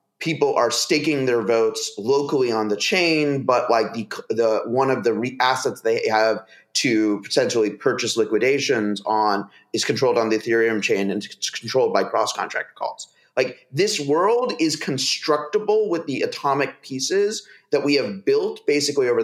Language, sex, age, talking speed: English, male, 30-49, 160 wpm